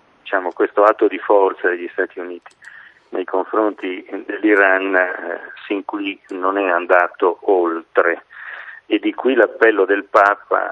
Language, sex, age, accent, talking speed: Italian, male, 40-59, native, 130 wpm